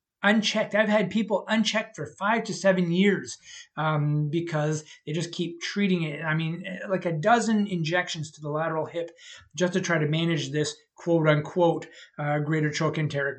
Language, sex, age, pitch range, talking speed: English, male, 30-49, 155-180 Hz, 170 wpm